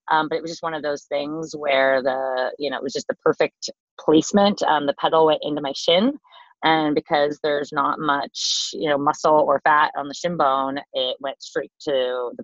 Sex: female